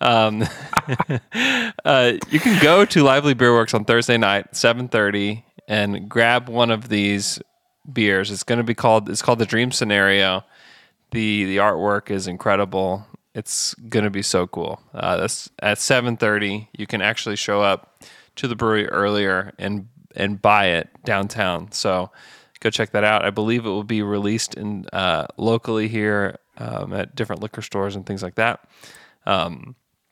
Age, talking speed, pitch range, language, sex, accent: 20-39, 165 wpm, 105-135 Hz, English, male, American